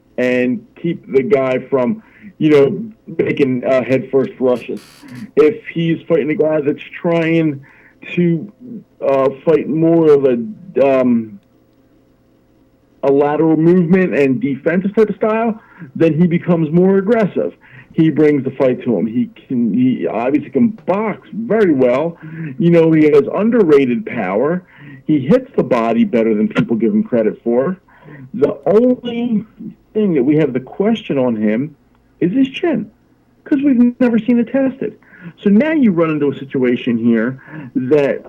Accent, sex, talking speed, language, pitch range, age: American, male, 150 wpm, English, 130-205 Hz, 50-69